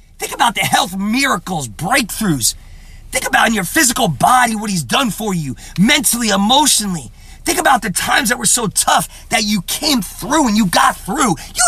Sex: male